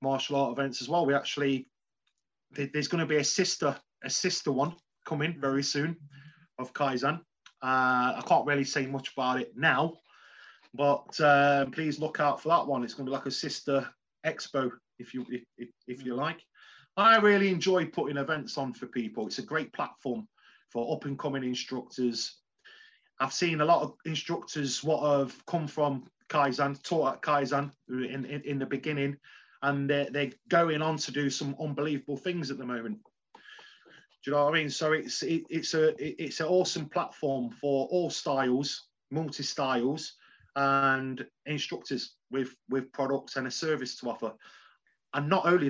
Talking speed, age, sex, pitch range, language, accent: 175 wpm, 30-49, male, 135-160 Hz, English, British